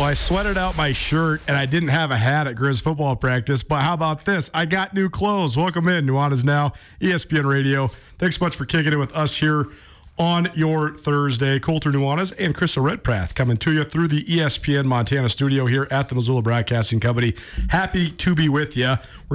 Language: English